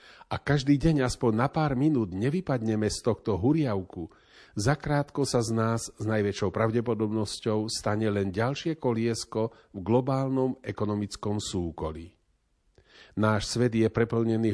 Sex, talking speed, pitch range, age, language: male, 125 wpm, 105-135 Hz, 40-59, Slovak